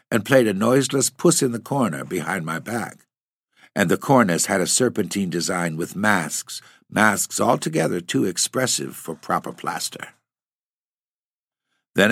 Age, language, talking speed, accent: 60-79, English, 140 wpm, American